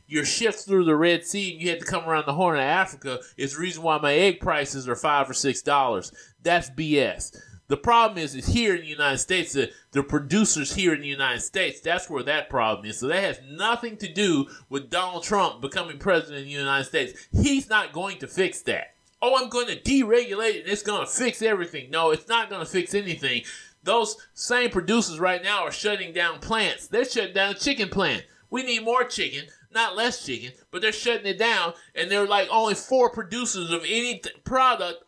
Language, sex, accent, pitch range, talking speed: English, male, American, 165-230 Hz, 215 wpm